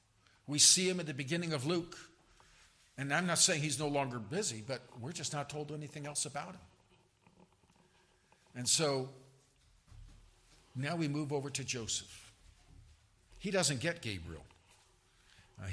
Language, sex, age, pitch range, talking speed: English, male, 50-69, 120-160 Hz, 145 wpm